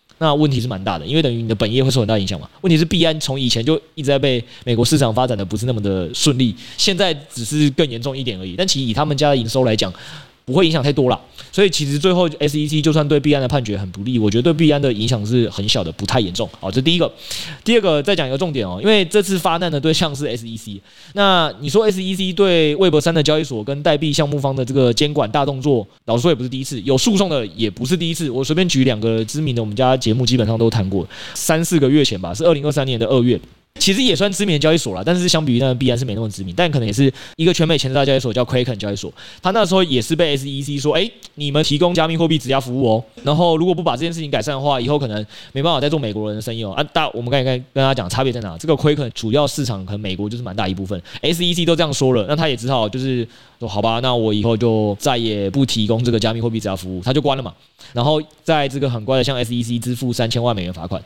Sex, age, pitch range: male, 20-39, 115-155 Hz